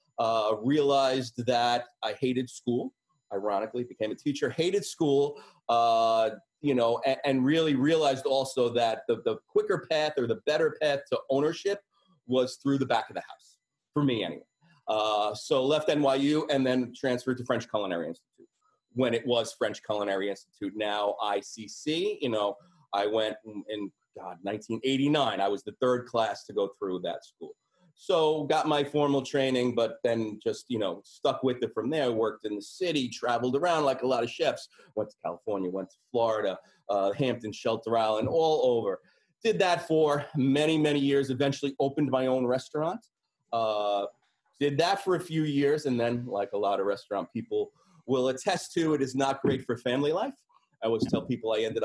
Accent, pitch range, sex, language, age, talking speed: American, 115-155 Hz, male, English, 30-49, 185 wpm